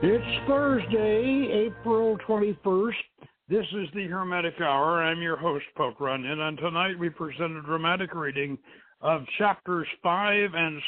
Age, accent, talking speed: 60-79, American, 140 wpm